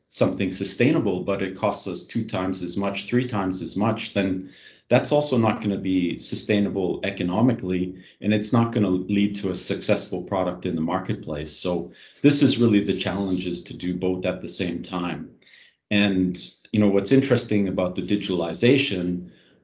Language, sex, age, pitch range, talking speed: English, male, 40-59, 85-100 Hz, 175 wpm